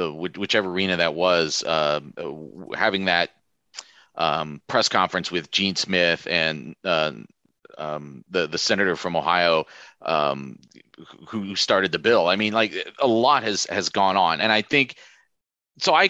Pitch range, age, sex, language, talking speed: 90-120 Hz, 30-49, male, English, 155 wpm